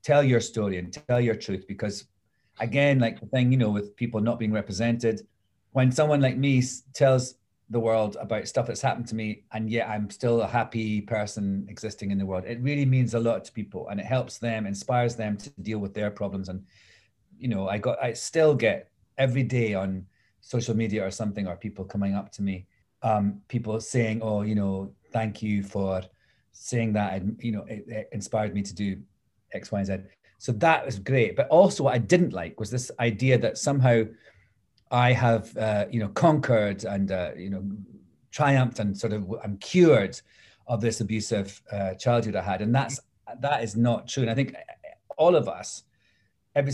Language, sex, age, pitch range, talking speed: English, male, 30-49, 100-125 Hz, 200 wpm